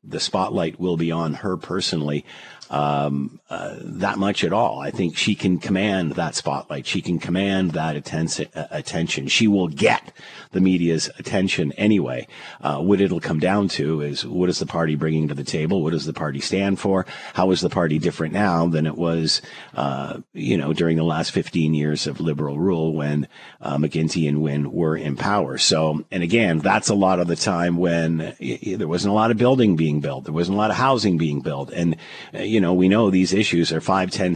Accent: American